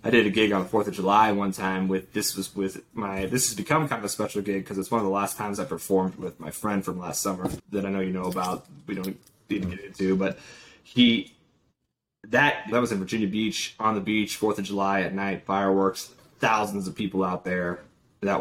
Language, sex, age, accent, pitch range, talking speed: English, male, 20-39, American, 95-110 Hz, 240 wpm